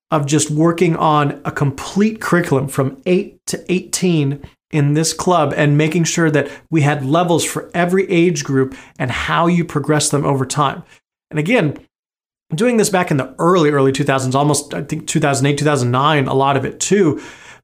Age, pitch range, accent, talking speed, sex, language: 30-49, 140-165 Hz, American, 175 wpm, male, English